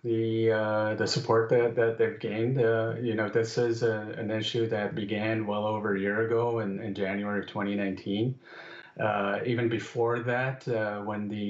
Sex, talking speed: male, 185 wpm